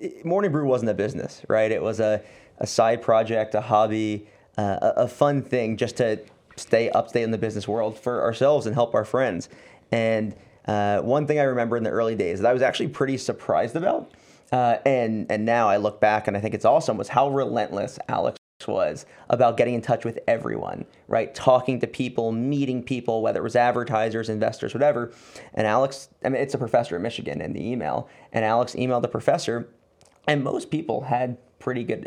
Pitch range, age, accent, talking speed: 110-135 Hz, 30-49, American, 205 wpm